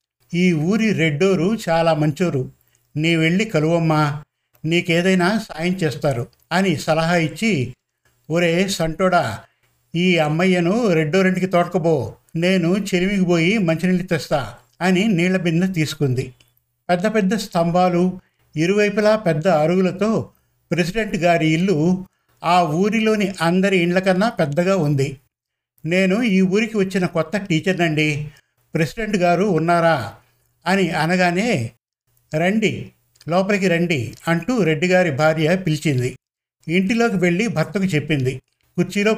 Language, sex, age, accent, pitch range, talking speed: Telugu, male, 60-79, native, 155-190 Hz, 100 wpm